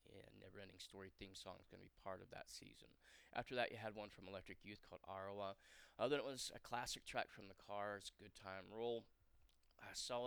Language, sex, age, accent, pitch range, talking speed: English, male, 20-39, American, 95-110 Hz, 220 wpm